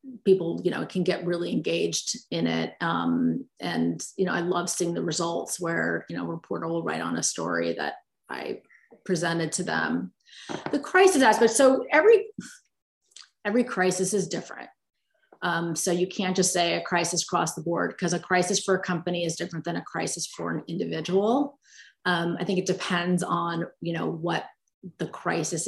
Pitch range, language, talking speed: 165-185 Hz, English, 180 wpm